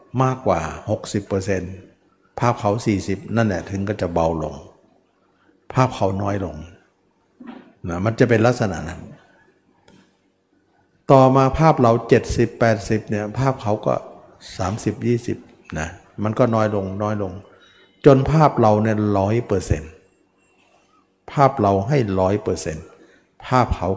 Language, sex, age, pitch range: Thai, male, 60-79, 95-120 Hz